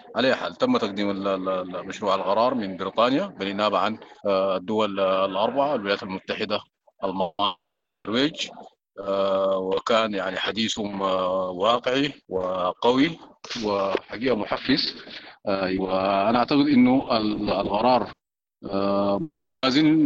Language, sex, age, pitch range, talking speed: English, male, 40-59, 95-120 Hz, 80 wpm